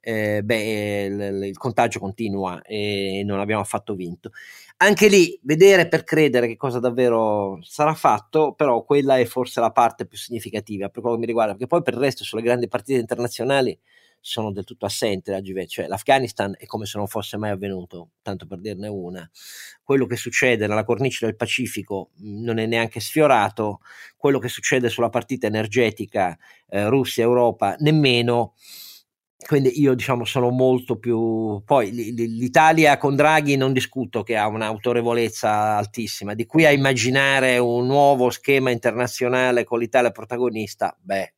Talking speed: 155 wpm